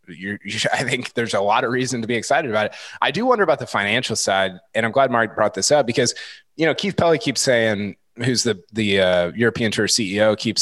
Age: 20-39